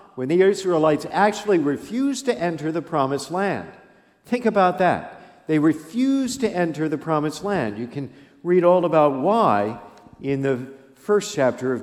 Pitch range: 120-180 Hz